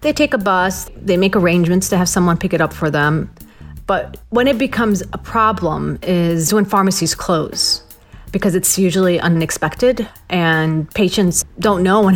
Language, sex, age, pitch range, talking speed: English, female, 40-59, 160-195 Hz, 170 wpm